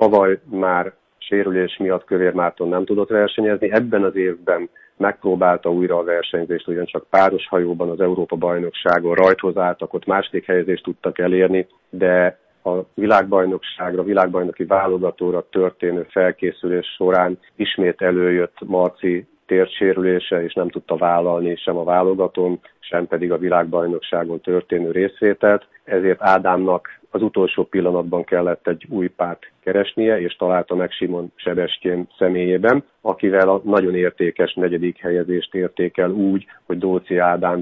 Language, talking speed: Hungarian, 130 wpm